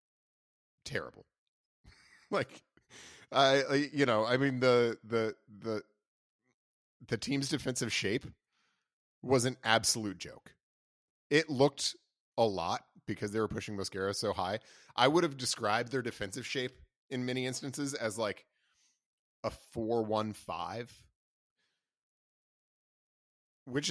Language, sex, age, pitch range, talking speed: English, male, 30-49, 105-130 Hz, 115 wpm